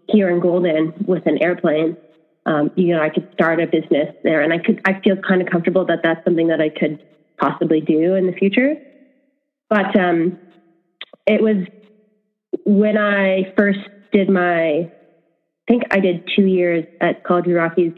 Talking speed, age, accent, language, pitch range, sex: 175 wpm, 20-39, American, English, 165-195 Hz, female